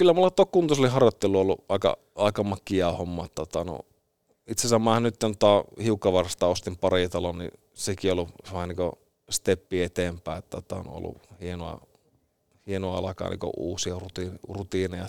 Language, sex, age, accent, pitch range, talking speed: Finnish, male, 30-49, native, 90-105 Hz, 140 wpm